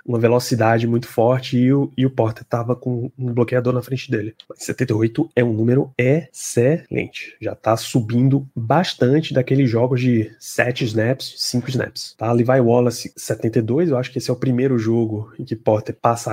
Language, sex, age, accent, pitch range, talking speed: Portuguese, male, 20-39, Brazilian, 120-145 Hz, 175 wpm